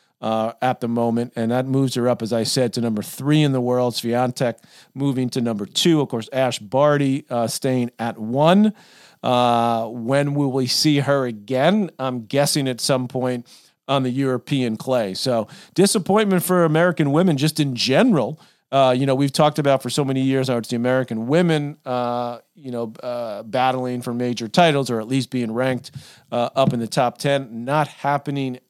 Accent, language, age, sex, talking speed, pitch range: American, English, 40-59, male, 190 wpm, 120-150 Hz